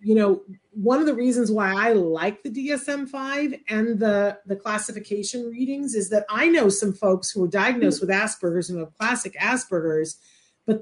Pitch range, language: 190-240 Hz, English